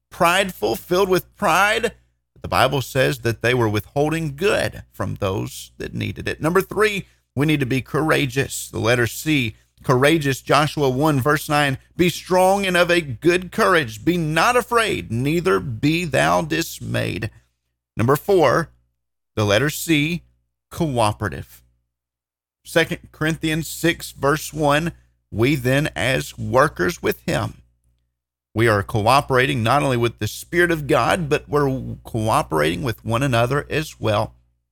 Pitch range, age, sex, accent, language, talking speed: 105-160 Hz, 40-59, male, American, English, 140 wpm